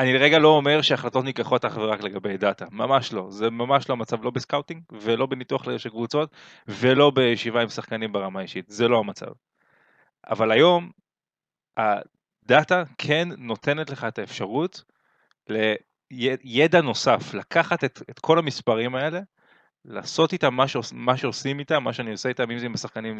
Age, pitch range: 20-39, 115-150 Hz